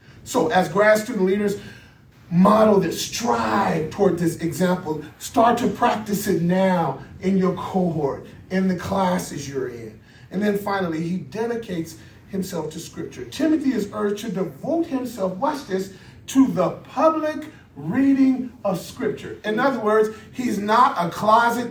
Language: English